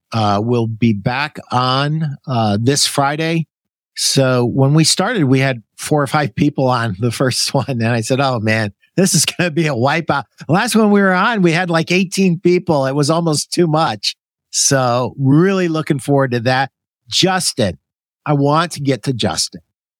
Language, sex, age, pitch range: English, male, 50-69, 125-165 Hz